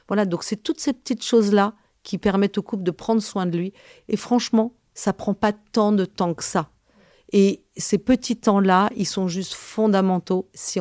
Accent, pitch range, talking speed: French, 170-215 Hz, 200 wpm